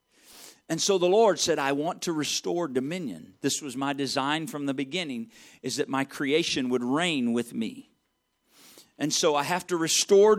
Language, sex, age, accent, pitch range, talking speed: English, male, 50-69, American, 155-230 Hz, 180 wpm